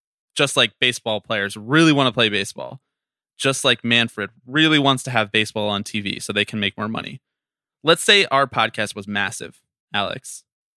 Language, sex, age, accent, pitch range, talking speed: English, male, 20-39, American, 110-145 Hz, 180 wpm